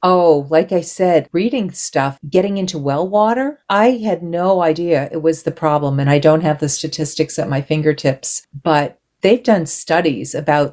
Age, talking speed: 40-59, 180 wpm